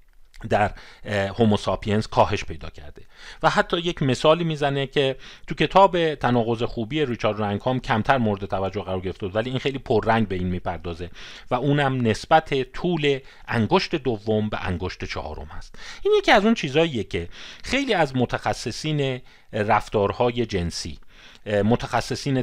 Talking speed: 135 wpm